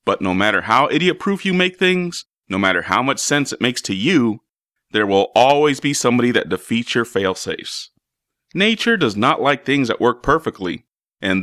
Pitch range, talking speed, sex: 115-170 Hz, 185 wpm, male